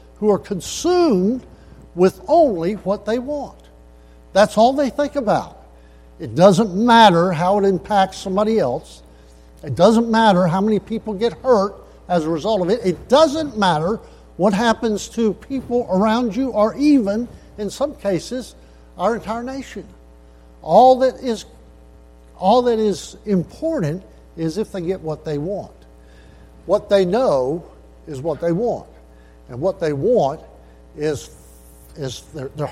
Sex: male